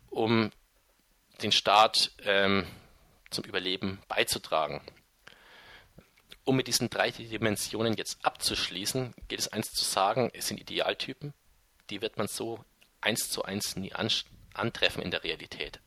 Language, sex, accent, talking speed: German, male, German, 130 wpm